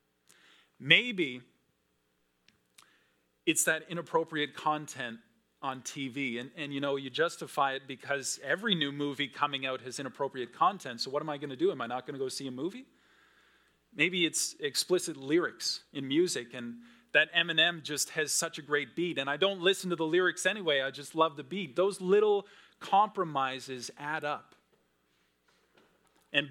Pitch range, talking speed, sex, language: 130-170 Hz, 165 wpm, male, English